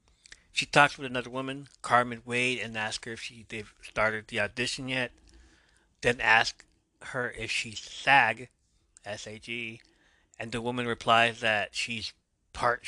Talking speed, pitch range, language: 140 wpm, 110-125 Hz, English